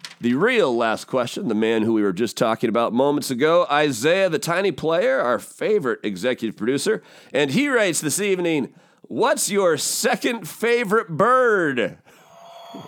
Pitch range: 145-230 Hz